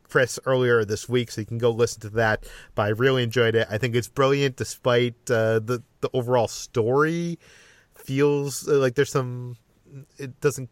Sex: male